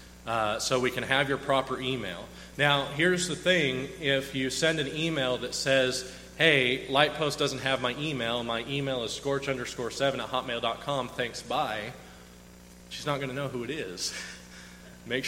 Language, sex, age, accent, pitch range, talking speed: English, male, 30-49, American, 110-150 Hz, 175 wpm